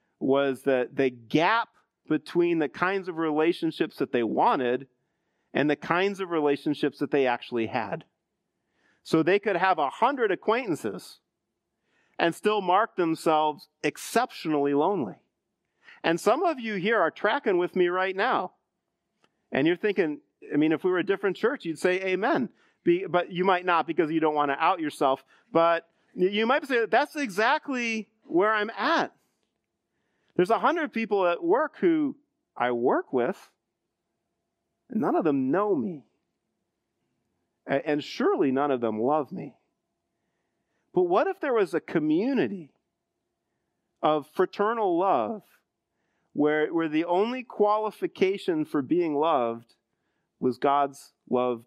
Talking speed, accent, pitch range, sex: 145 wpm, American, 150-230 Hz, male